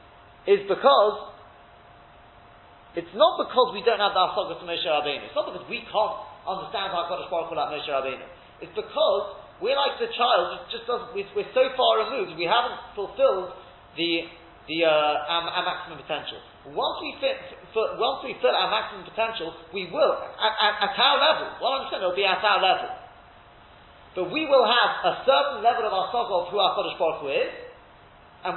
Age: 40-59